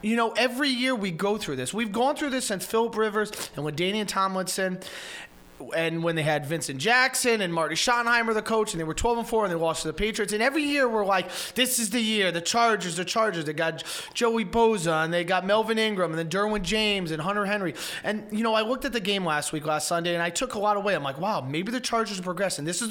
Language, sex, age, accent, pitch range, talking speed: English, male, 30-49, American, 170-230 Hz, 260 wpm